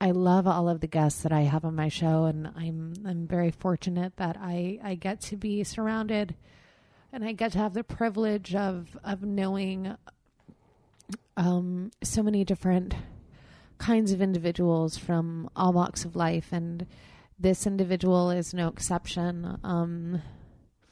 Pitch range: 170-195 Hz